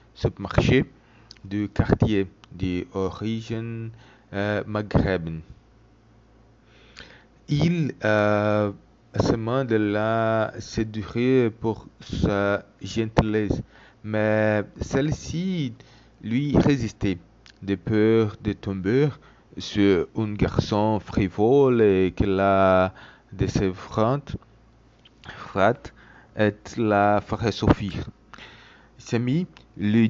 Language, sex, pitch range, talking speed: French, male, 100-120 Hz, 80 wpm